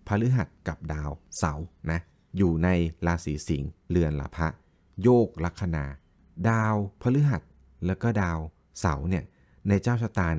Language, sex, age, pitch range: Thai, male, 20-39, 85-110 Hz